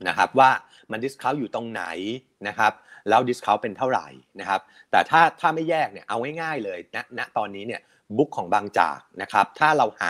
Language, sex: Thai, male